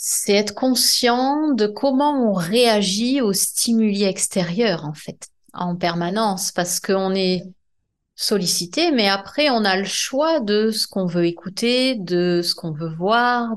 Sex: female